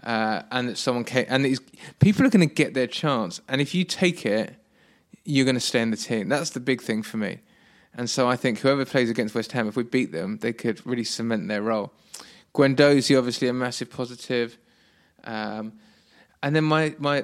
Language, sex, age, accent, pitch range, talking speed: English, male, 20-39, British, 110-130 Hz, 205 wpm